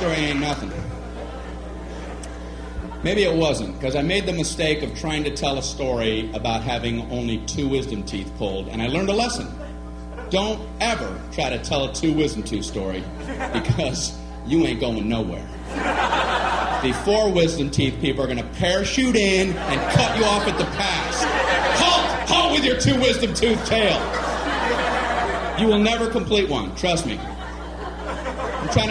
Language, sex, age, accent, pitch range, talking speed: English, male, 40-59, American, 130-220 Hz, 160 wpm